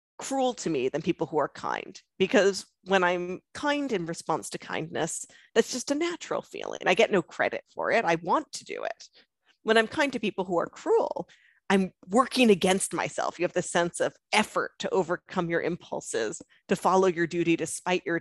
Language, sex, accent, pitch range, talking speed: English, female, American, 170-265 Hz, 200 wpm